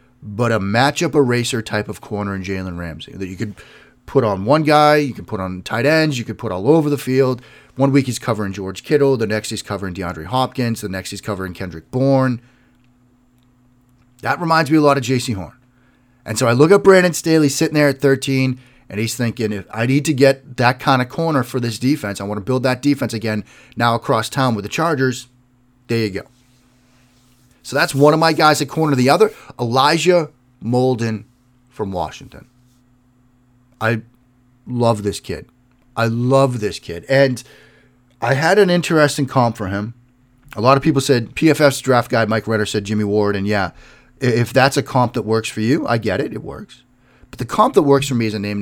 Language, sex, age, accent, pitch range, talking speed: English, male, 30-49, American, 110-135 Hz, 205 wpm